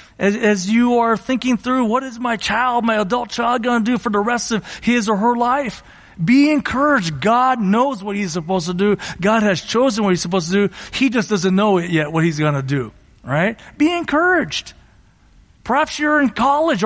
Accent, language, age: American, English, 40-59